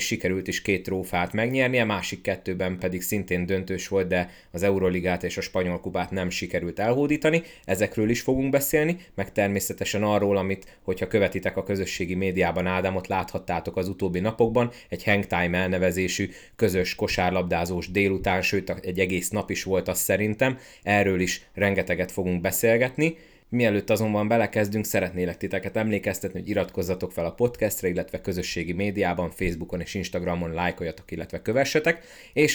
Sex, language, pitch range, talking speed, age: male, Hungarian, 90-105 Hz, 145 wpm, 30-49